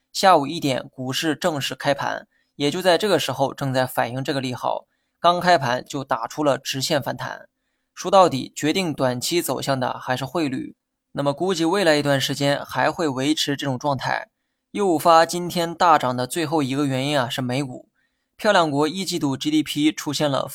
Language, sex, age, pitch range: Chinese, male, 20-39, 135-165 Hz